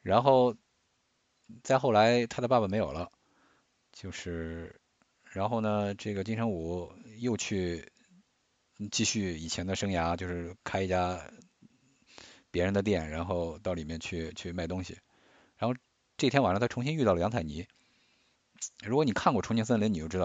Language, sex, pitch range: English, male, 85-115 Hz